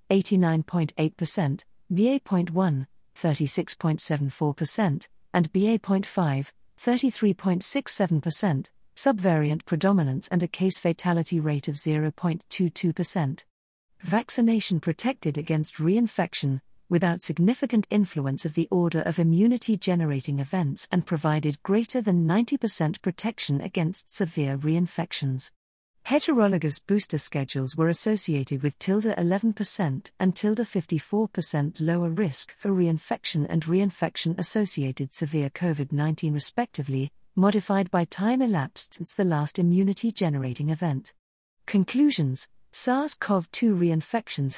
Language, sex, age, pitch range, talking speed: English, female, 50-69, 155-200 Hz, 100 wpm